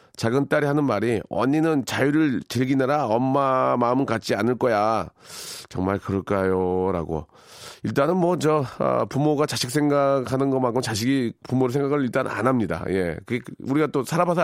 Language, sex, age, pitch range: Korean, male, 40-59, 110-140 Hz